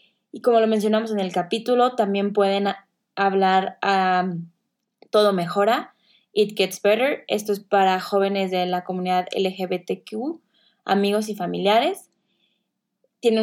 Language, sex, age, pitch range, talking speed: Spanish, female, 20-39, 190-215 Hz, 125 wpm